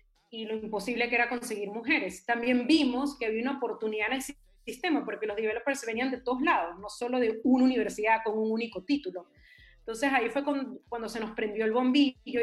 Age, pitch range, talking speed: 30-49, 215-265 Hz, 200 wpm